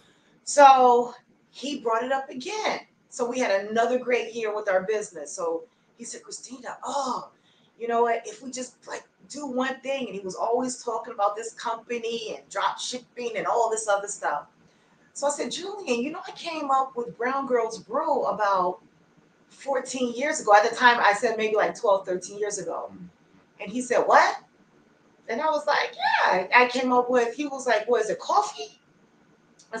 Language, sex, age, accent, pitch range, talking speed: English, female, 30-49, American, 200-250 Hz, 190 wpm